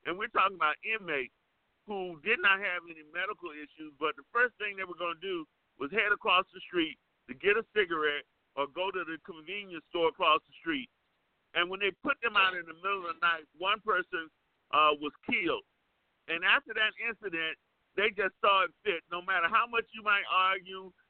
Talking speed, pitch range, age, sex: 205 wpm, 165-220 Hz, 50-69, male